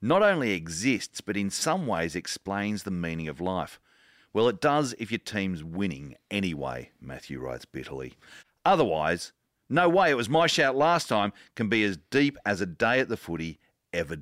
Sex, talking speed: male, 180 wpm